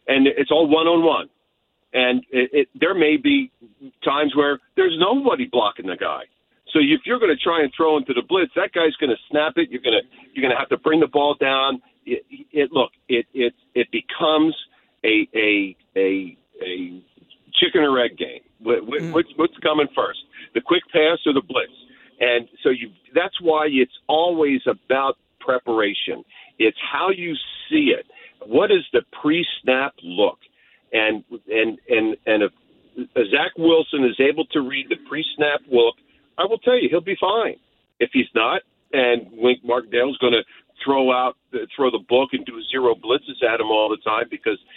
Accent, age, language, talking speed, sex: American, 50-69, English, 180 wpm, male